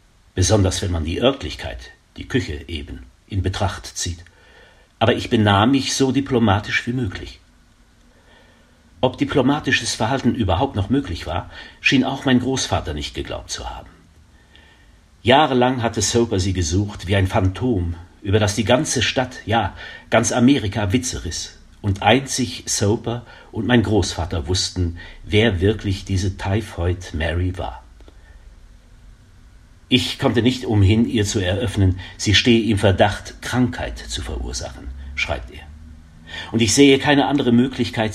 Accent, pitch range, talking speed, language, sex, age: German, 85-115 Hz, 135 wpm, German, male, 50-69